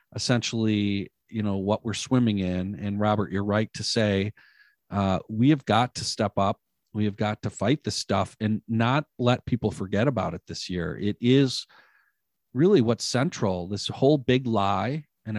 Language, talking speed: English, 180 wpm